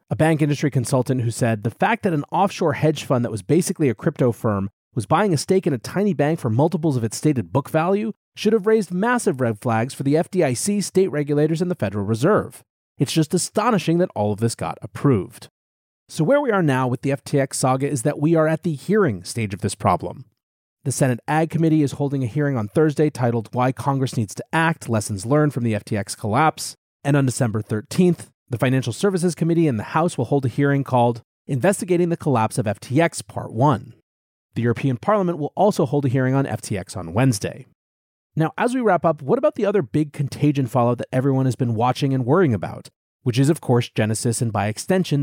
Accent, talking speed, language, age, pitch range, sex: American, 215 wpm, English, 30-49, 115-160 Hz, male